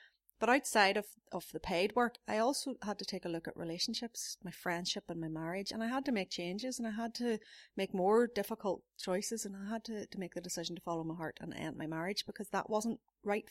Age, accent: 30-49, Irish